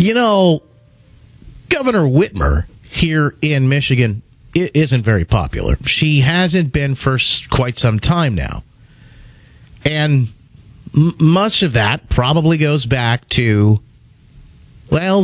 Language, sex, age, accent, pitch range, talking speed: English, male, 40-59, American, 115-155 Hz, 105 wpm